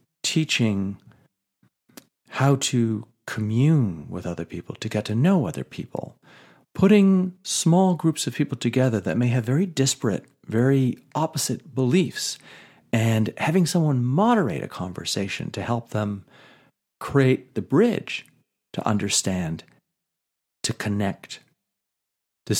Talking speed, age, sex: 115 wpm, 40-59, male